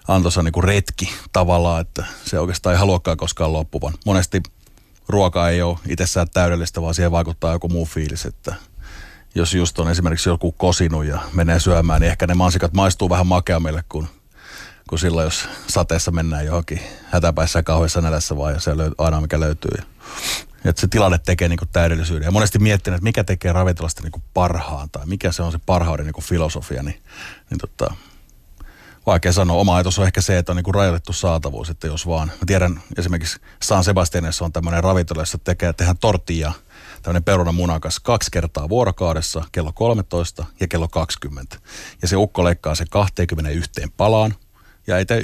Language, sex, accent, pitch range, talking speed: Finnish, male, native, 80-95 Hz, 180 wpm